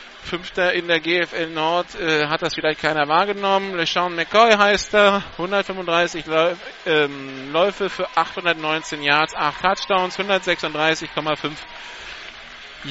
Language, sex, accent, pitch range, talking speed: German, male, German, 150-195 Hz, 115 wpm